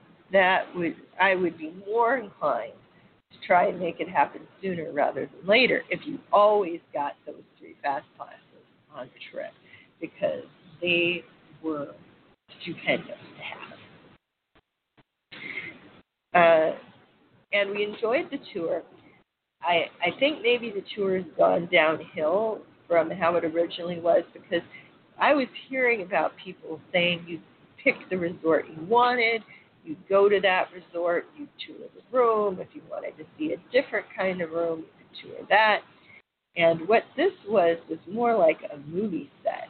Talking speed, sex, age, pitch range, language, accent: 150 wpm, female, 50-69, 170-225 Hz, English, American